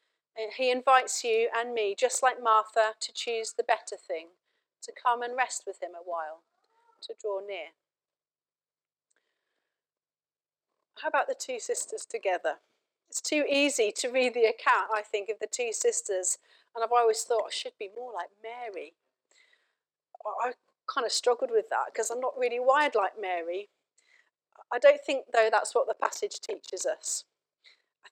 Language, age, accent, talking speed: English, 40-59, British, 165 wpm